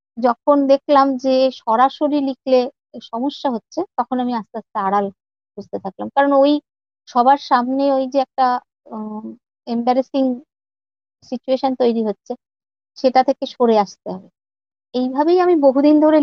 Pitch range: 225-270 Hz